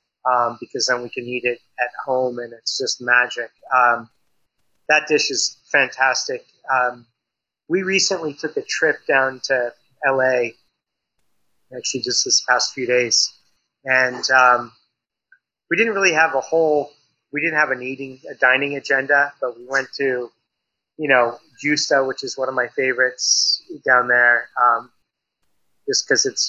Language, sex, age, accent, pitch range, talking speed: English, male, 30-49, American, 125-160 Hz, 155 wpm